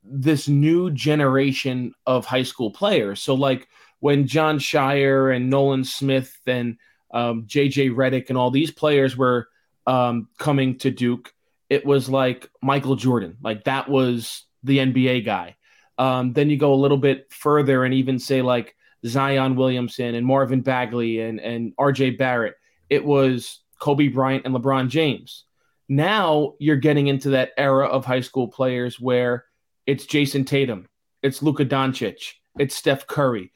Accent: American